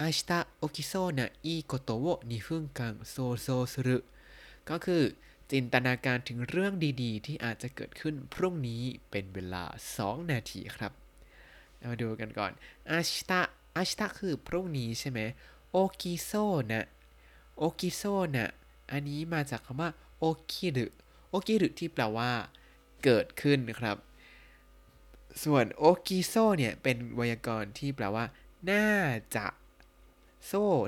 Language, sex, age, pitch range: Thai, male, 20-39, 115-165 Hz